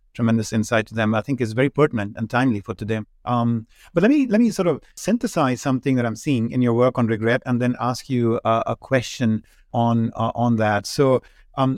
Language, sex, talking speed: English, male, 225 wpm